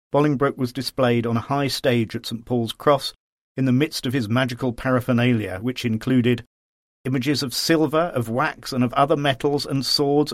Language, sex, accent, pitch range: English, male, British, 115-140 Hz